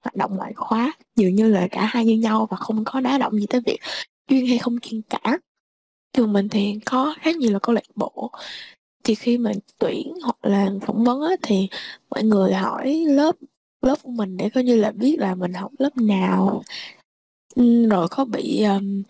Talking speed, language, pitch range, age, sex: 205 wpm, Vietnamese, 205-255 Hz, 20-39, female